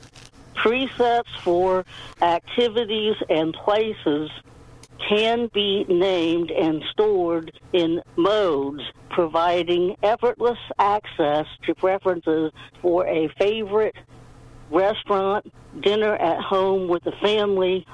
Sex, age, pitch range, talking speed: female, 60-79, 165-210 Hz, 90 wpm